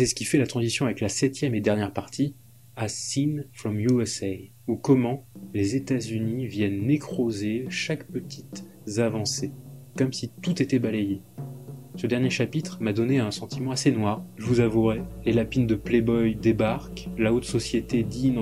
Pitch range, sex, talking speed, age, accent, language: 110-135 Hz, male, 165 wpm, 20-39, French, French